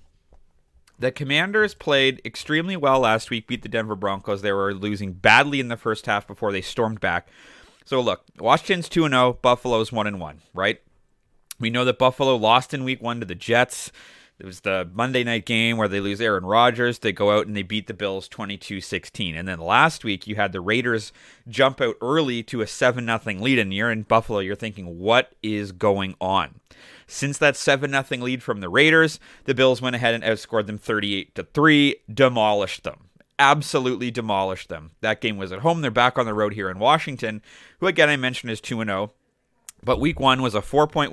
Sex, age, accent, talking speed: male, 30-49, American, 190 wpm